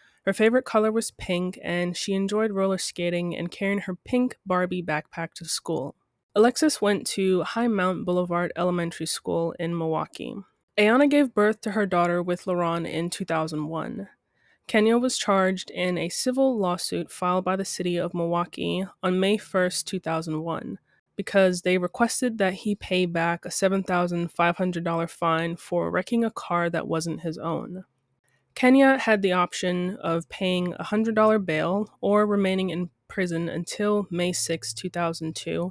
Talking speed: 150 wpm